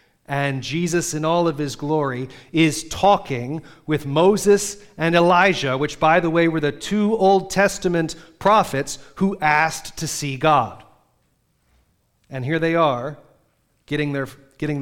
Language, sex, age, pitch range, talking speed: English, male, 40-59, 130-170 Hz, 135 wpm